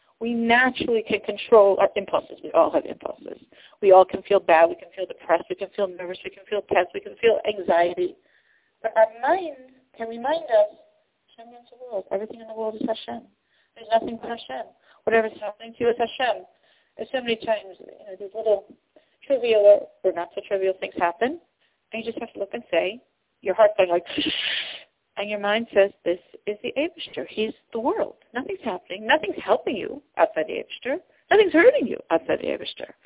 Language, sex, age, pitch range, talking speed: English, female, 40-59, 200-300 Hz, 190 wpm